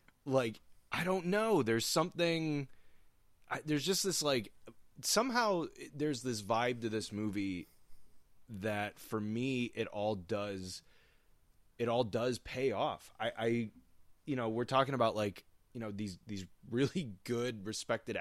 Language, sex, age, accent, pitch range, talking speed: English, male, 20-39, American, 95-130 Hz, 140 wpm